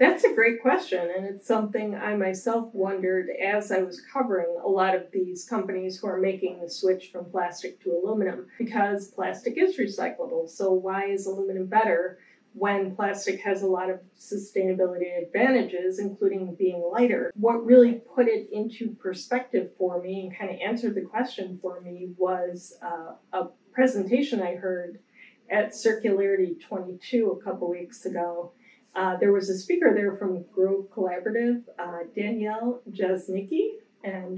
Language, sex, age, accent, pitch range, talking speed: English, female, 40-59, American, 185-225 Hz, 155 wpm